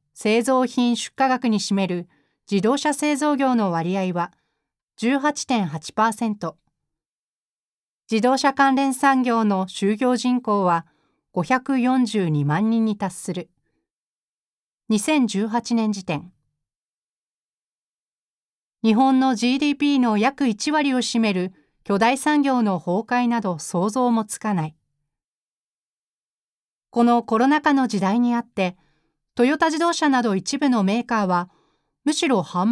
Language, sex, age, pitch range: Japanese, female, 40-59, 185-265 Hz